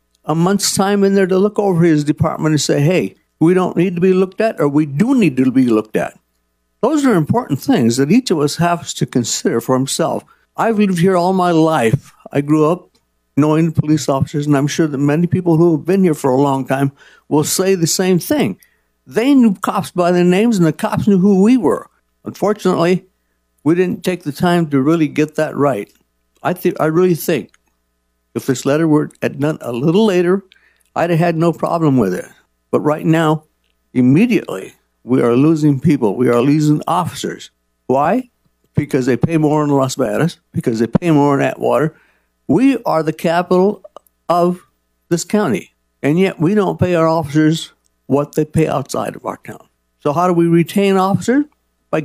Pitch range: 140-180 Hz